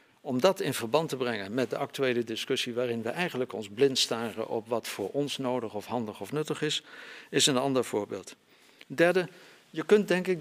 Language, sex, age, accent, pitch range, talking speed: Dutch, male, 60-79, Dutch, 130-175 Hz, 200 wpm